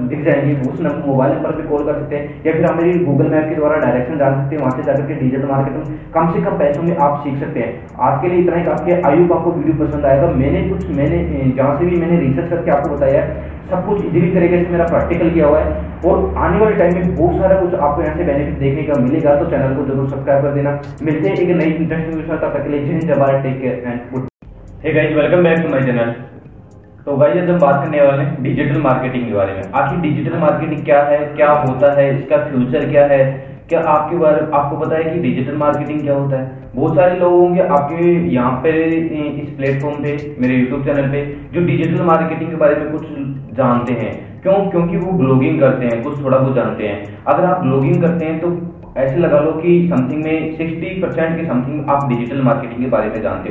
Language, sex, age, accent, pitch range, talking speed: Hindi, male, 20-39, native, 135-165 Hz, 150 wpm